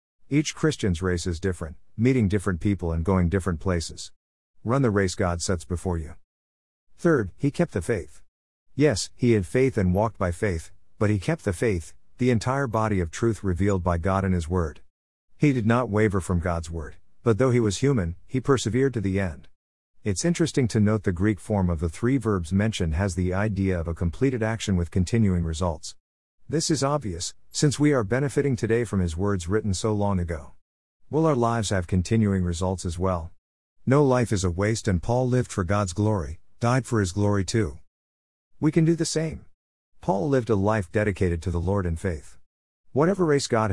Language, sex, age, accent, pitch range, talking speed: English, male, 50-69, American, 85-120 Hz, 200 wpm